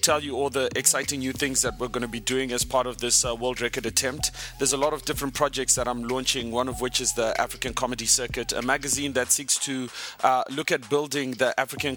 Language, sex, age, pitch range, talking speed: English, male, 30-49, 120-140 Hz, 245 wpm